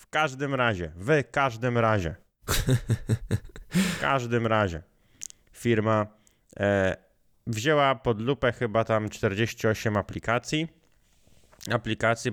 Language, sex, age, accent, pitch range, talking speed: Polish, male, 20-39, native, 105-130 Hz, 105 wpm